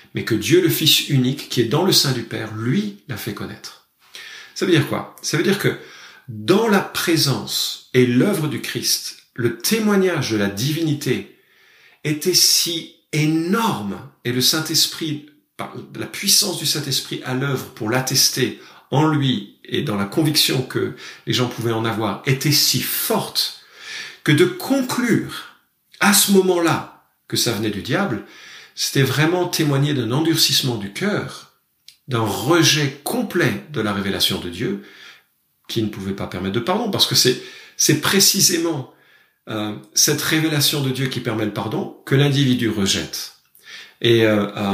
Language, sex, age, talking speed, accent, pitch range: French, male, 50-69, 160 wpm, French, 110-160 Hz